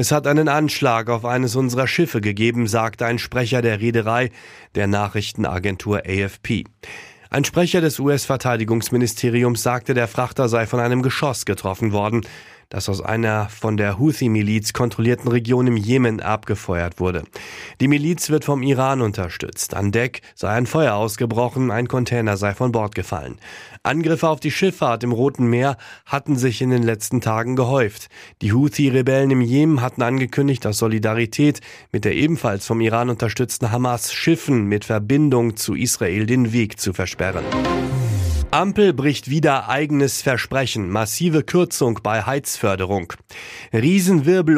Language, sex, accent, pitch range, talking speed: German, male, German, 110-135 Hz, 145 wpm